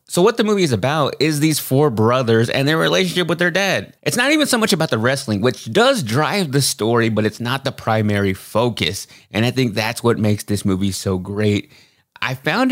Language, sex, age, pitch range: English, male, 30-49, 110-155 Hz